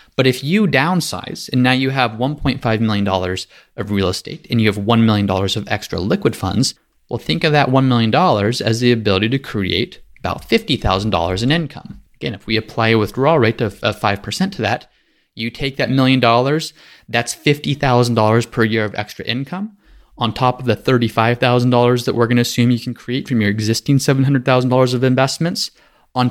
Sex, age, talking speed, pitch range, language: male, 30-49, 185 wpm, 105-130 Hz, English